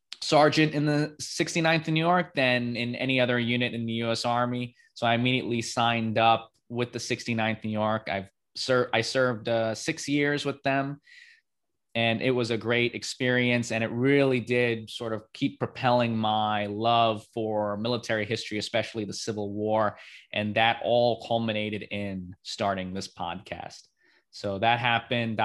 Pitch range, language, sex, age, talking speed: 105-130 Hz, English, male, 20-39, 155 wpm